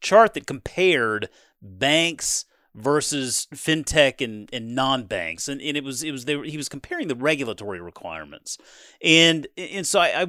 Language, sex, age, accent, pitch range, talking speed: English, male, 40-59, American, 130-170 Hz, 165 wpm